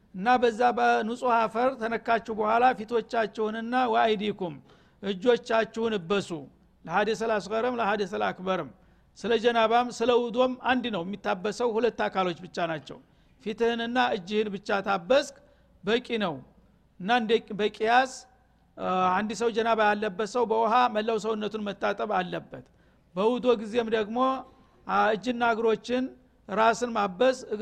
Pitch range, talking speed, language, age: 210-240 Hz, 90 wpm, Amharic, 60-79